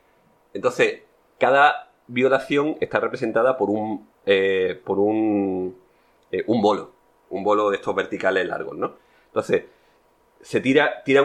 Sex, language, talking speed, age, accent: male, Spanish, 130 wpm, 30-49, Spanish